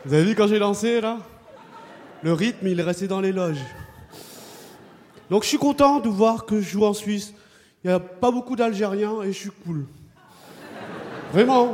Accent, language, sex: French, French, male